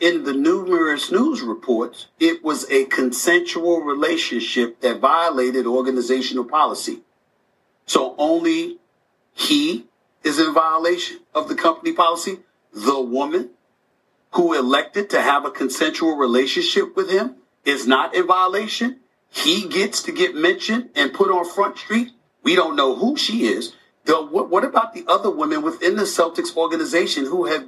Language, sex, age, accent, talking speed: English, male, 50-69, American, 145 wpm